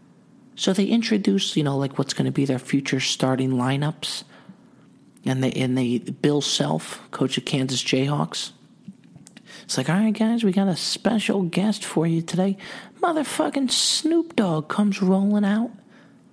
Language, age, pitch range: English, 40-59, 155-245 Hz